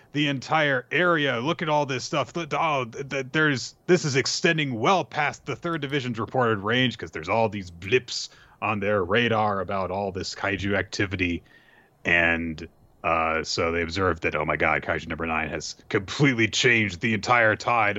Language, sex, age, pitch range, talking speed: English, male, 30-49, 85-140 Hz, 170 wpm